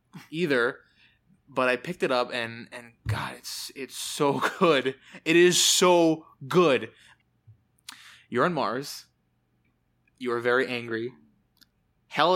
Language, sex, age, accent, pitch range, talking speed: English, male, 20-39, American, 120-155 Hz, 115 wpm